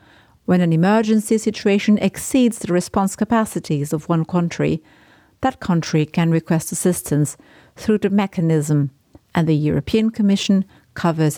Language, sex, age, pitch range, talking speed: English, female, 50-69, 155-215 Hz, 125 wpm